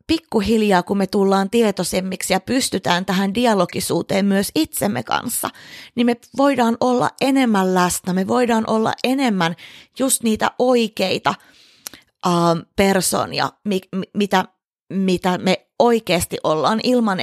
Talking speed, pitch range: 120 wpm, 185-220 Hz